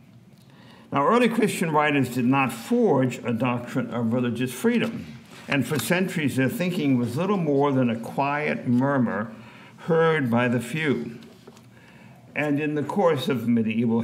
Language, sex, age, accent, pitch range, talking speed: English, male, 60-79, American, 115-165 Hz, 145 wpm